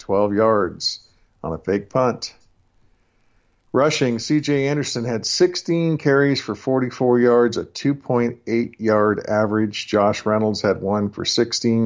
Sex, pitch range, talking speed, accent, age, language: male, 100-120 Hz, 120 wpm, American, 50-69, English